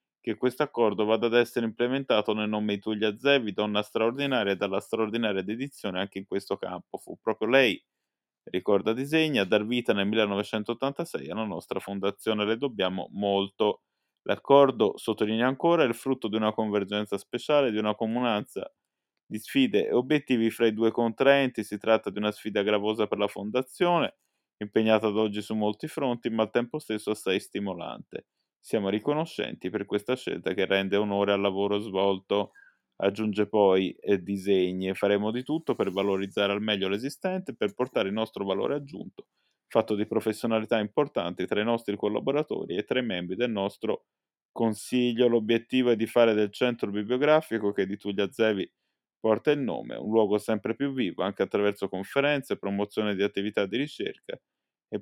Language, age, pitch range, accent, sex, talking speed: Italian, 20-39, 105-125 Hz, native, male, 165 wpm